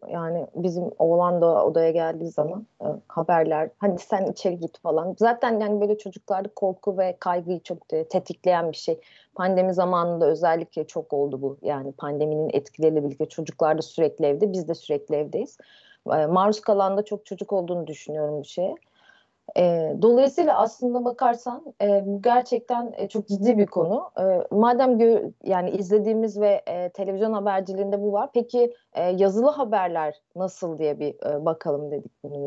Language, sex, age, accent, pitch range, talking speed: Turkish, female, 30-49, native, 170-220 Hz, 160 wpm